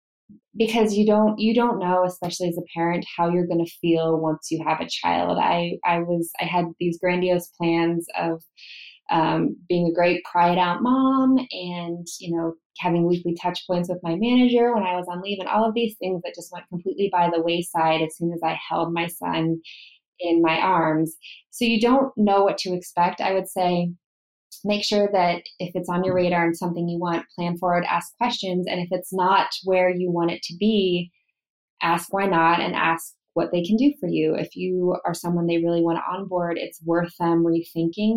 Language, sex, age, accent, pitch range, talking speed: English, female, 20-39, American, 170-195 Hz, 210 wpm